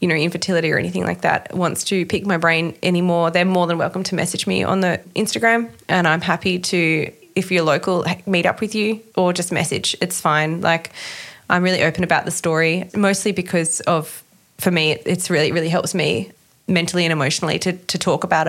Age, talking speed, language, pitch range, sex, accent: 20-39, 205 wpm, English, 170-190 Hz, female, Australian